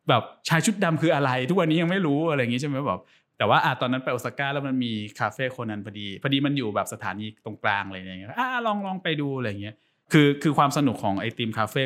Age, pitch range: 20-39, 105-145 Hz